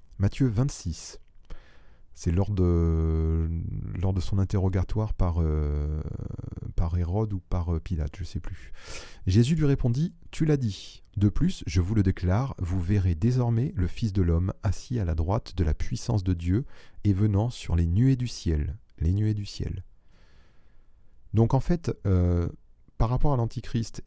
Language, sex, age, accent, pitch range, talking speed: French, male, 30-49, French, 85-110 Hz, 165 wpm